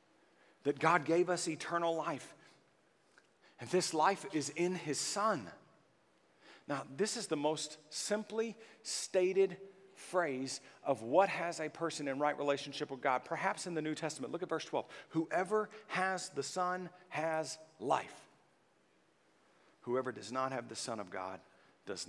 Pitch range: 120-160 Hz